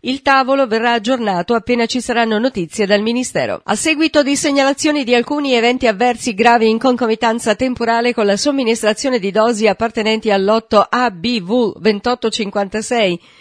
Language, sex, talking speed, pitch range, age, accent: Italian, female, 140 wpm, 210-245 Hz, 50-69, native